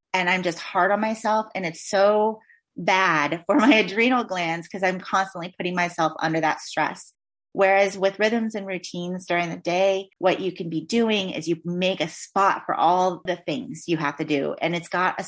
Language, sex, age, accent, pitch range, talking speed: English, female, 30-49, American, 170-215 Hz, 205 wpm